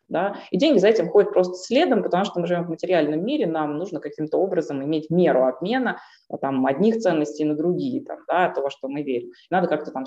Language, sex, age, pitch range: Russian, female, 20-39, 150-195 Hz